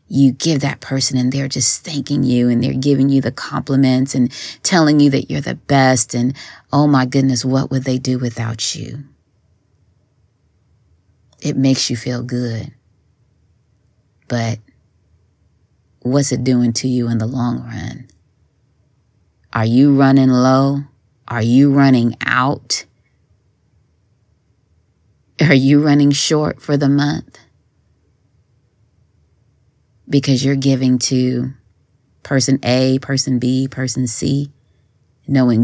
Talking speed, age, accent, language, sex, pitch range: 125 wpm, 30-49, American, English, female, 115-135 Hz